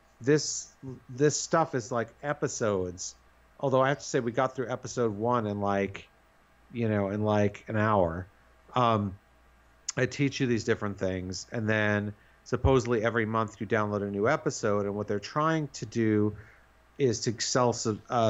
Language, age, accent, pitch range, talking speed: English, 40-59, American, 100-125 Hz, 165 wpm